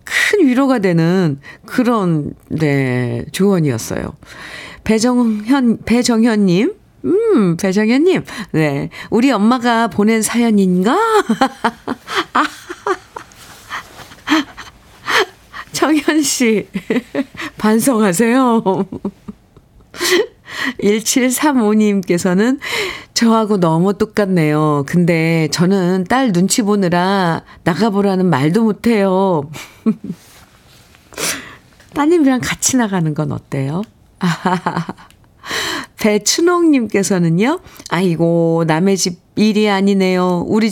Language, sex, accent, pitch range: Korean, female, native, 185-240 Hz